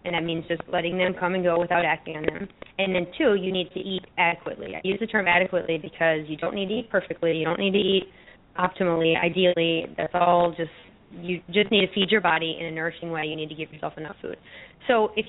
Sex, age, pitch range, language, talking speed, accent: female, 20-39, 170-200 Hz, English, 245 wpm, American